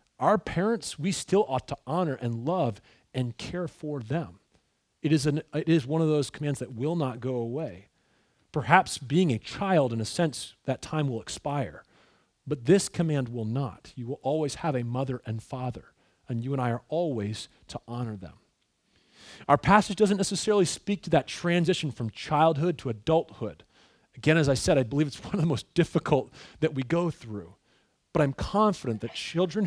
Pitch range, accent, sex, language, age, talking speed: 120-165 Hz, American, male, English, 40-59, 190 wpm